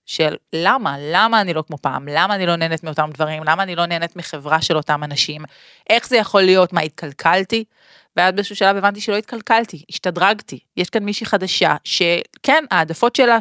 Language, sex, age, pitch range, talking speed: Hebrew, female, 30-49, 155-205 Hz, 185 wpm